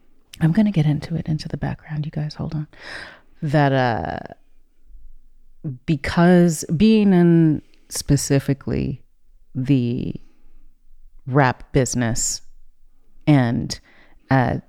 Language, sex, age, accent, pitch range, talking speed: English, female, 30-49, American, 130-160 Hz, 100 wpm